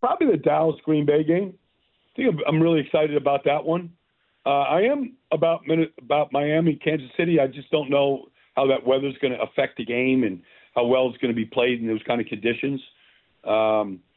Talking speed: 205 wpm